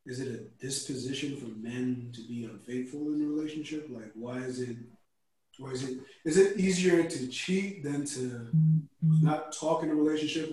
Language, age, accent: English, 30-49, American